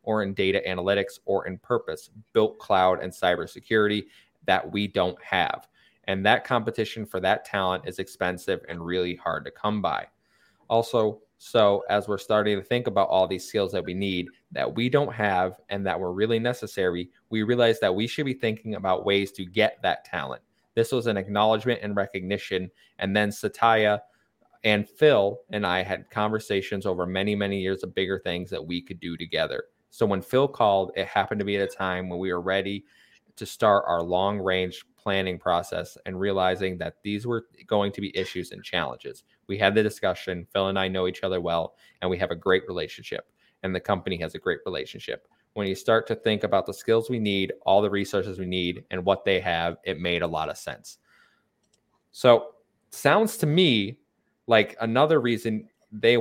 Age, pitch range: 20-39, 95-110 Hz